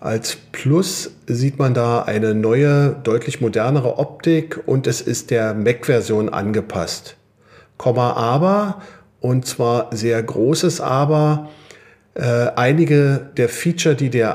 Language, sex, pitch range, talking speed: German, male, 115-155 Hz, 120 wpm